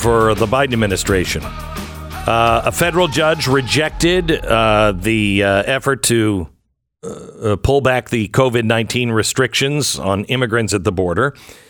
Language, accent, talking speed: English, American, 135 wpm